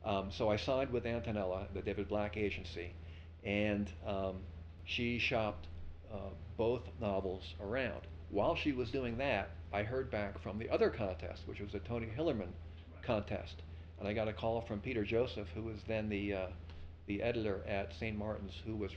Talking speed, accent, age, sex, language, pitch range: 175 wpm, American, 50-69, male, English, 85-105 Hz